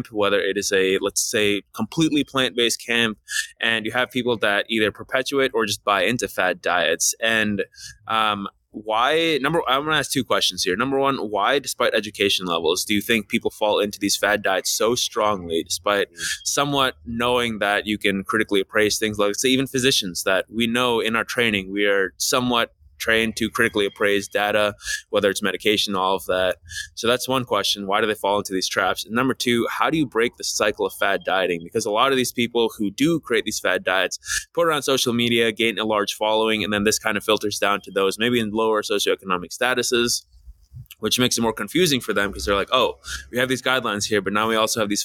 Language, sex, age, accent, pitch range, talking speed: English, male, 20-39, American, 100-125 Hz, 215 wpm